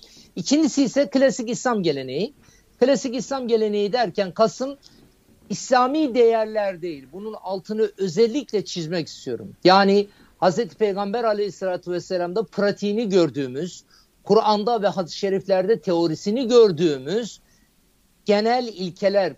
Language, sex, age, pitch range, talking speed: Turkish, male, 50-69, 175-220 Hz, 100 wpm